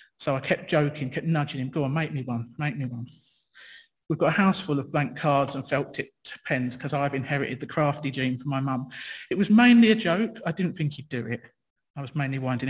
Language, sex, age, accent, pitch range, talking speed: English, male, 40-59, British, 135-170 Hz, 235 wpm